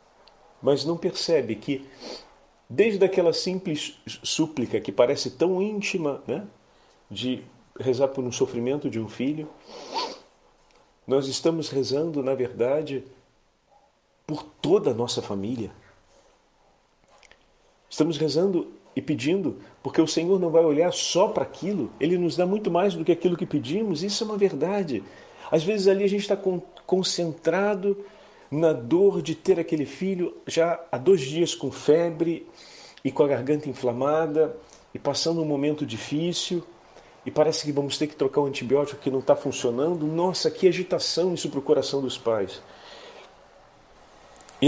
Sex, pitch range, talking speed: male, 130-175 Hz, 150 wpm